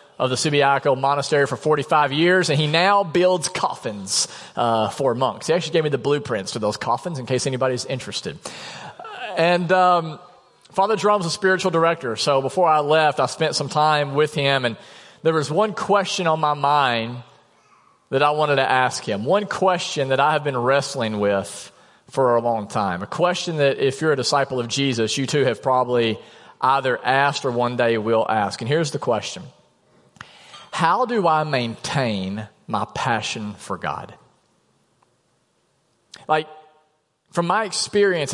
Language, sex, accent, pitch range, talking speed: English, male, American, 125-155 Hz, 165 wpm